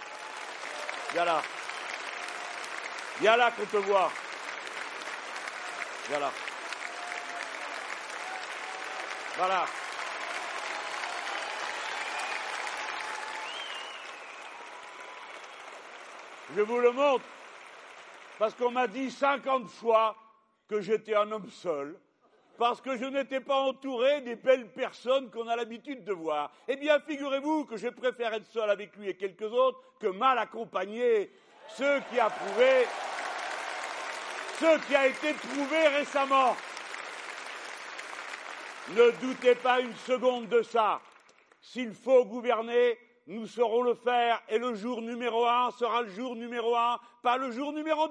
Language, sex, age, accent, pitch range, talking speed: French, male, 60-79, French, 230-275 Hz, 115 wpm